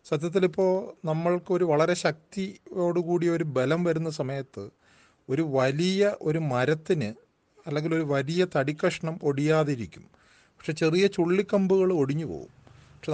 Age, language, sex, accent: 30-49, Malayalam, male, native